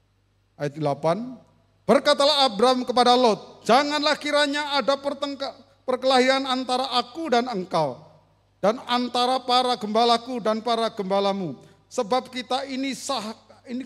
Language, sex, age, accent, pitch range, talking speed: Indonesian, male, 50-69, native, 185-260 Hz, 115 wpm